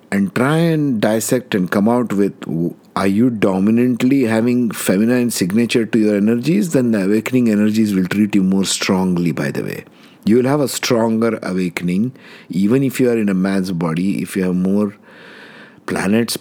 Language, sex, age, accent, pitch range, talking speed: English, male, 60-79, Indian, 95-115 Hz, 175 wpm